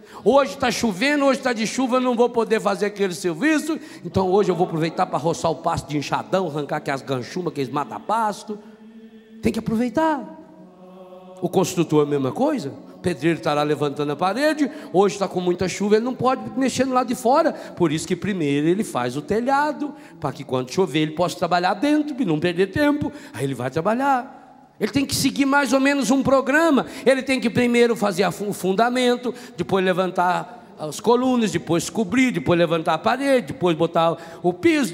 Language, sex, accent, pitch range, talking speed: Portuguese, male, Brazilian, 175-255 Hz, 195 wpm